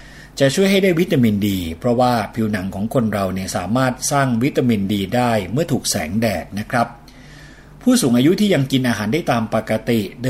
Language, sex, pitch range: Thai, male, 110-140 Hz